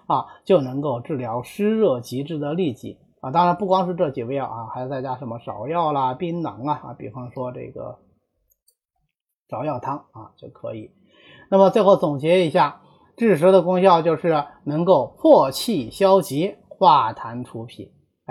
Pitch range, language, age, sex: 135-220 Hz, Chinese, 30-49, male